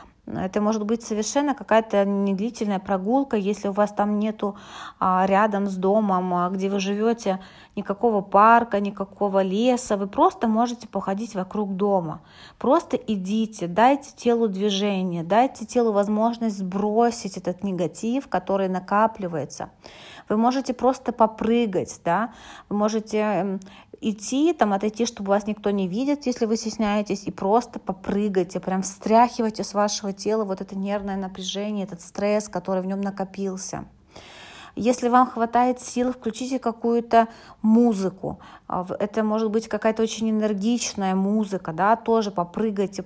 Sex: female